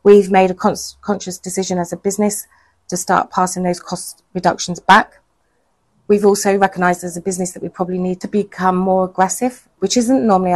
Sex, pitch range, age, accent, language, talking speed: female, 175-195 Hz, 30-49, British, English, 180 wpm